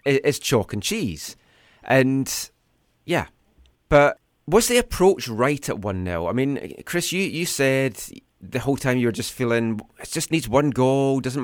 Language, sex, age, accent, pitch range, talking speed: English, male, 30-49, British, 110-145 Hz, 170 wpm